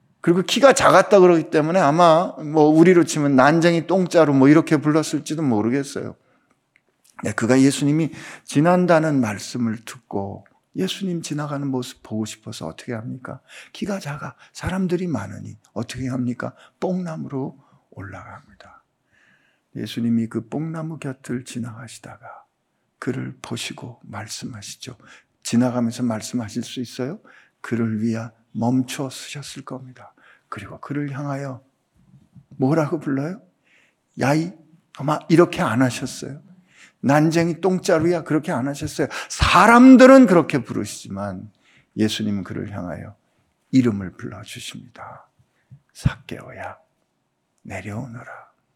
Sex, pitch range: male, 115-160 Hz